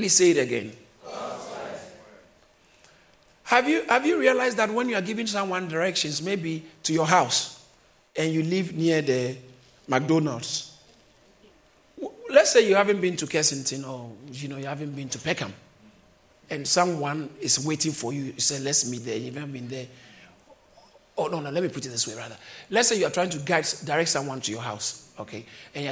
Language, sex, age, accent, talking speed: English, male, 50-69, Nigerian, 190 wpm